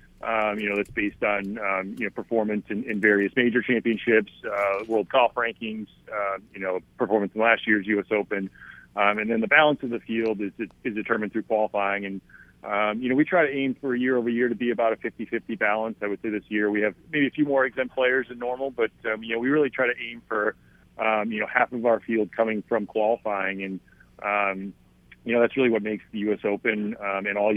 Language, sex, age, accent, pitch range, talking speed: English, male, 30-49, American, 100-115 Hz, 235 wpm